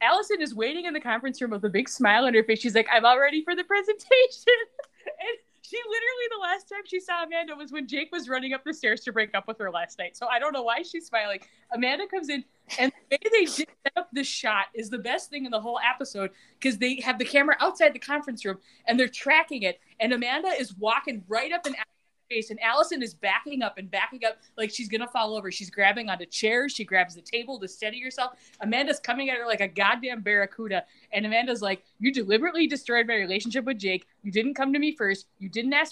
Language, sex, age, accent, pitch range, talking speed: English, female, 20-39, American, 215-285 Hz, 245 wpm